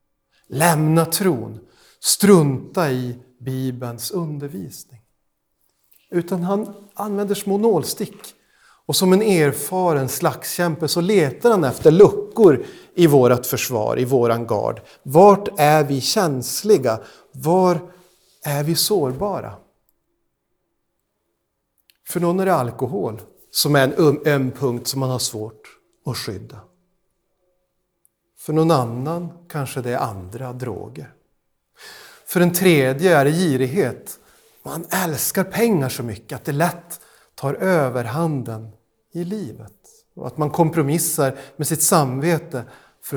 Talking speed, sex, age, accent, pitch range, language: 120 wpm, male, 50-69, native, 130-175 Hz, Swedish